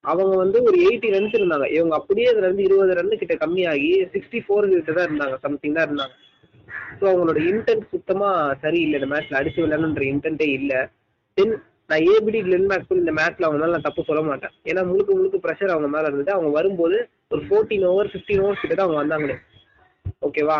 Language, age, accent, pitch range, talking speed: Tamil, 20-39, native, 150-205 Hz, 165 wpm